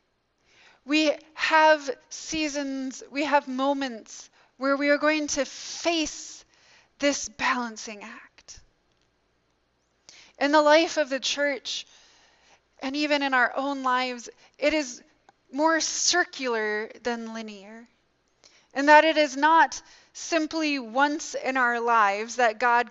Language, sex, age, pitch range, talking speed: English, female, 20-39, 235-290 Hz, 120 wpm